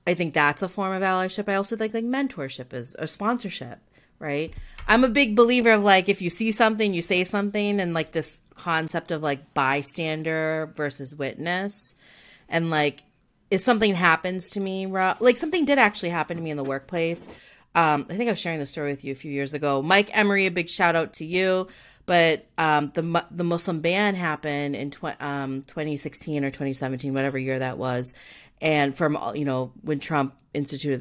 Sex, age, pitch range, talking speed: female, 30-49, 135-175 Hz, 190 wpm